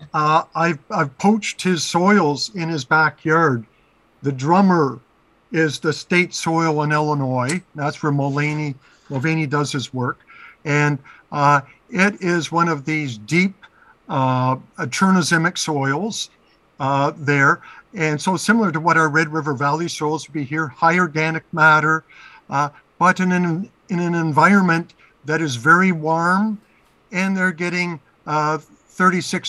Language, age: English, 50-69